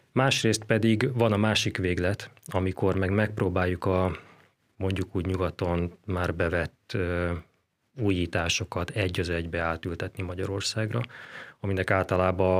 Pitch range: 95-110 Hz